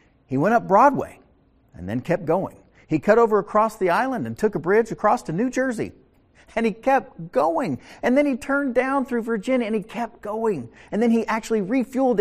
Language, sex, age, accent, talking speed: English, male, 50-69, American, 205 wpm